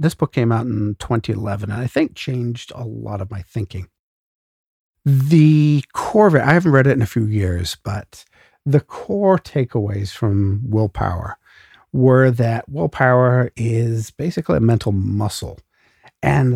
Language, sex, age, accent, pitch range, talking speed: English, male, 50-69, American, 100-130 Hz, 150 wpm